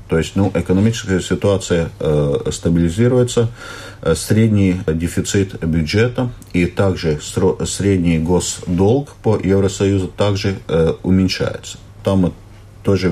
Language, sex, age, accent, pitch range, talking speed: Russian, male, 50-69, native, 85-105 Hz, 100 wpm